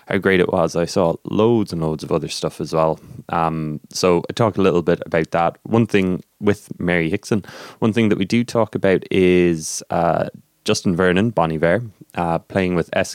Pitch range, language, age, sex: 85-110 Hz, English, 20-39, male